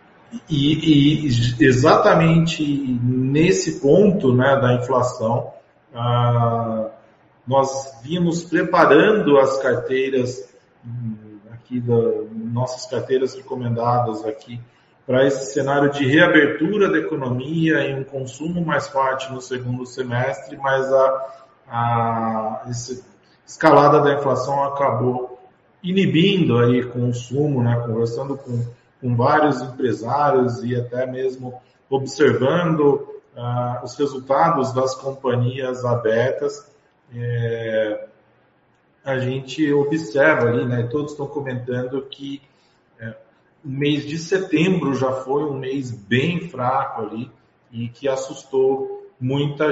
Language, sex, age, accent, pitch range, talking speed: Portuguese, male, 40-59, Brazilian, 120-145 Hz, 105 wpm